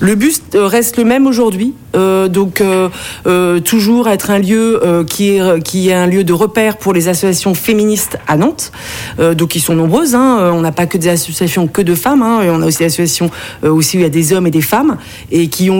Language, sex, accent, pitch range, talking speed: French, female, French, 170-210 Hz, 250 wpm